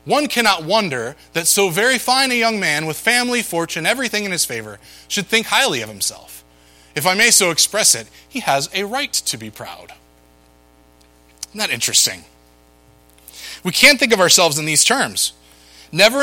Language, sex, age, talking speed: English, male, 20-39, 175 wpm